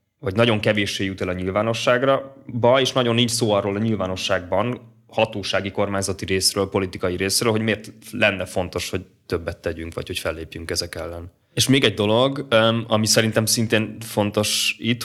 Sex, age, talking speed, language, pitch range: male, 20-39, 165 wpm, Hungarian, 95-115 Hz